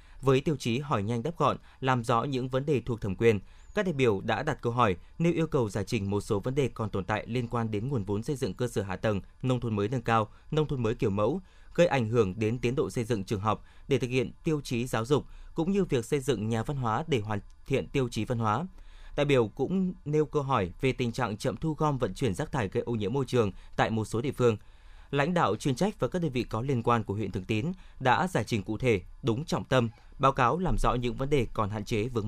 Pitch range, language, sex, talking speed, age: 110-140 Hz, Vietnamese, male, 275 wpm, 20-39